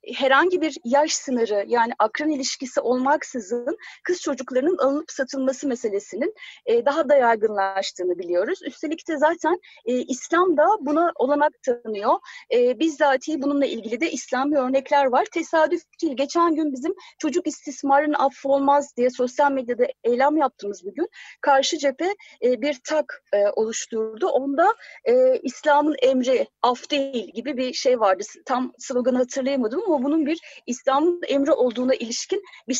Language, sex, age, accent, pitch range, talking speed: Turkish, female, 30-49, native, 250-315 Hz, 130 wpm